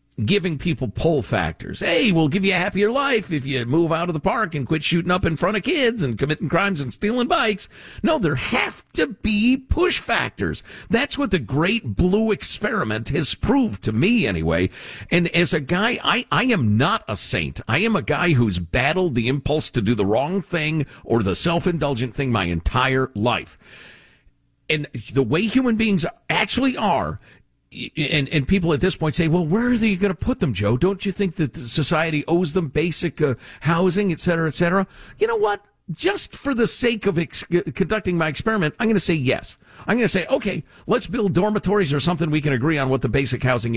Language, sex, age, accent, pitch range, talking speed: English, male, 50-69, American, 140-210 Hz, 210 wpm